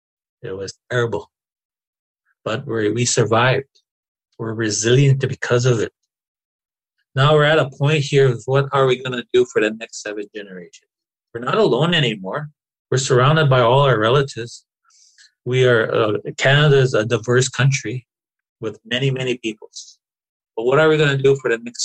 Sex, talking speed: male, 170 wpm